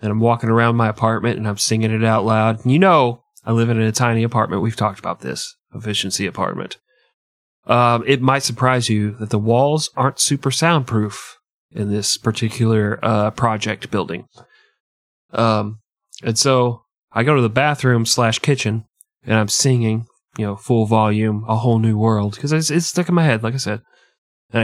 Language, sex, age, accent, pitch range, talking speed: English, male, 30-49, American, 110-140 Hz, 180 wpm